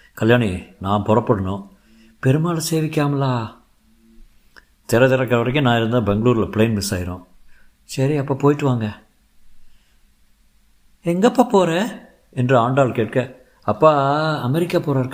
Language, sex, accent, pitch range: Tamil, male, native, 105-140 Hz